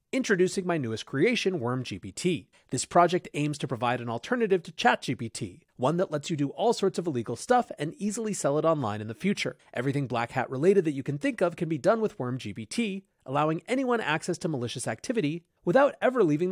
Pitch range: 130-185 Hz